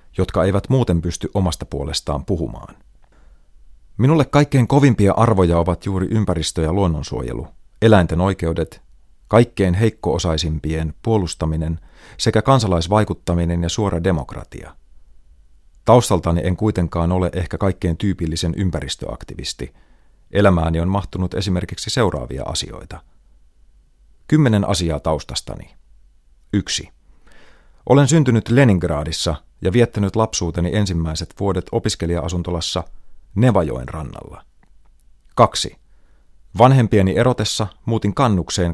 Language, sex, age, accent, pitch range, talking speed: Finnish, male, 30-49, native, 75-100 Hz, 95 wpm